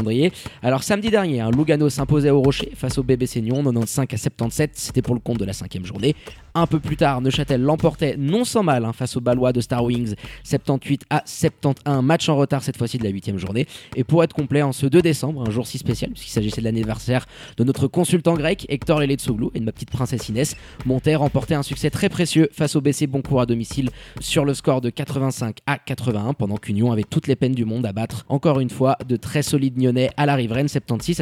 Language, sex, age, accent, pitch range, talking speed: French, male, 20-39, French, 125-150 Hz, 230 wpm